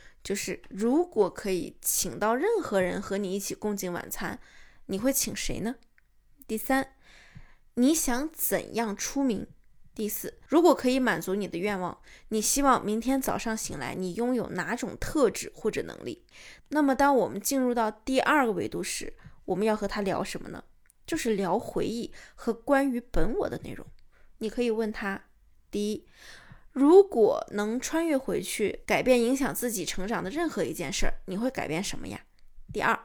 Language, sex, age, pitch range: Chinese, female, 20-39, 210-270 Hz